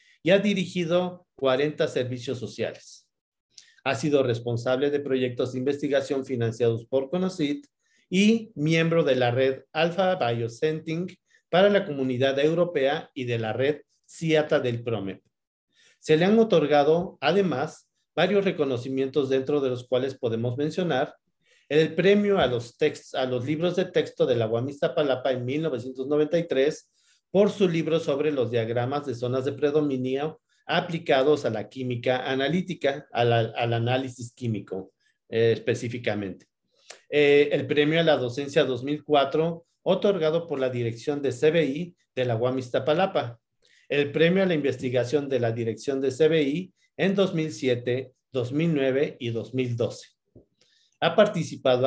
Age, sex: 50-69, male